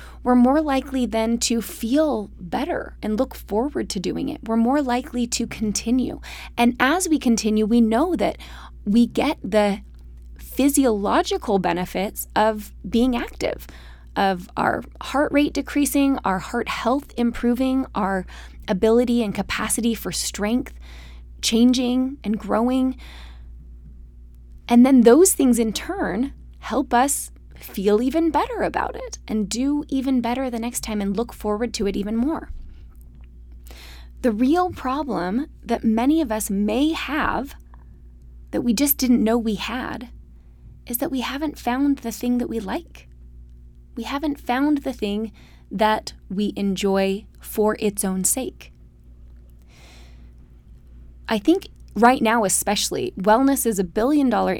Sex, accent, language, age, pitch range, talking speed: female, American, English, 20-39, 180-255 Hz, 135 wpm